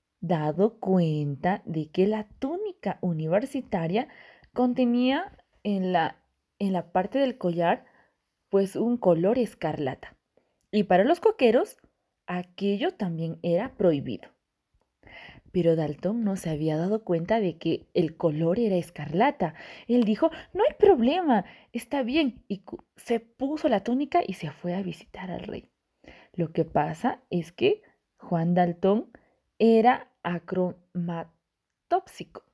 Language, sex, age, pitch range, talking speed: Spanish, female, 30-49, 175-245 Hz, 125 wpm